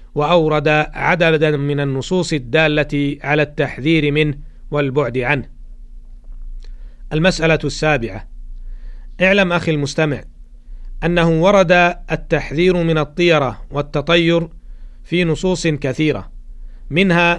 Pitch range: 145-170 Hz